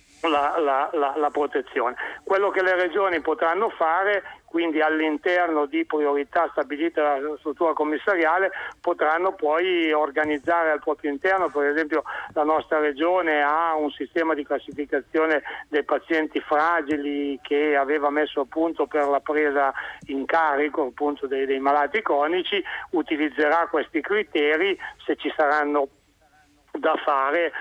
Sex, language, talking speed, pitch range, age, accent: male, Italian, 130 wpm, 150-170 Hz, 60-79, native